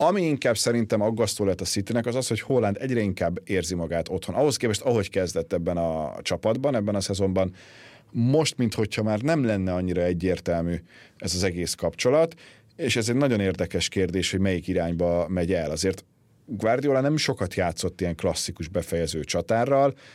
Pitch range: 95-125 Hz